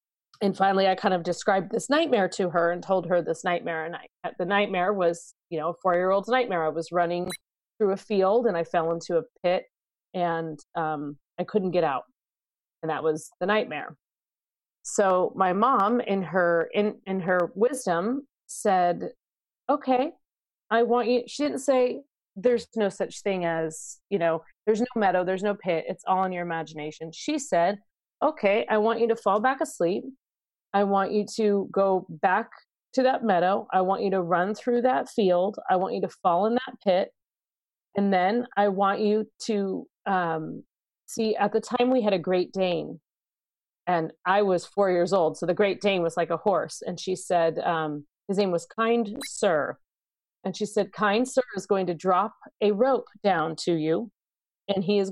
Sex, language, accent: female, English, American